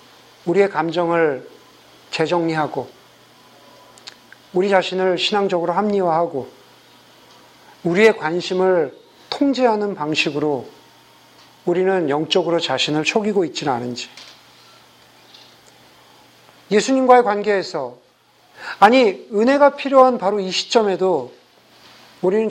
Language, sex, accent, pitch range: Korean, male, native, 155-210 Hz